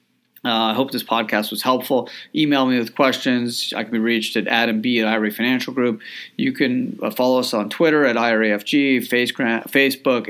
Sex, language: male, English